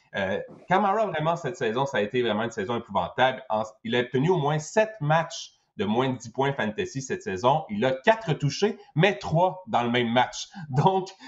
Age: 30-49